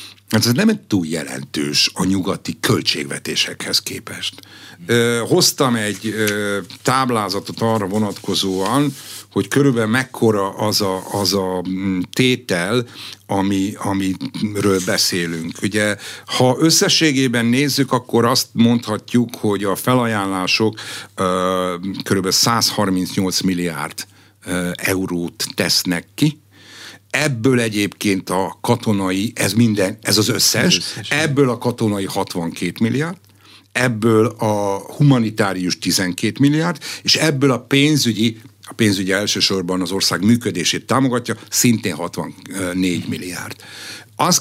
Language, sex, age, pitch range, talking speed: Hungarian, male, 60-79, 95-125 Hz, 105 wpm